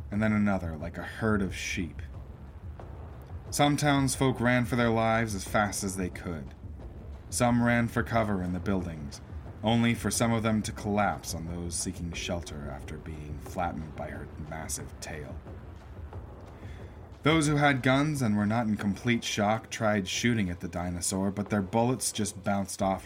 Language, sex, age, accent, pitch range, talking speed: English, male, 30-49, American, 85-110 Hz, 170 wpm